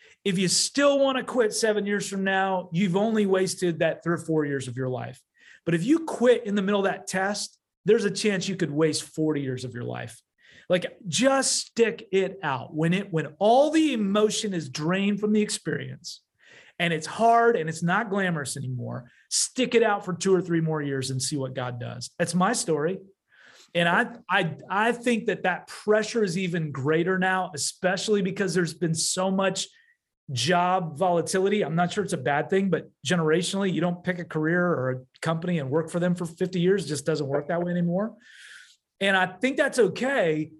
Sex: male